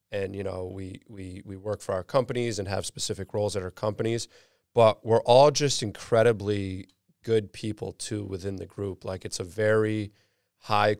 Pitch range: 95-110 Hz